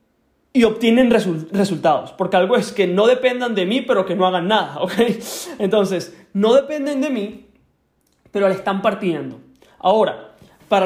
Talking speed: 160 wpm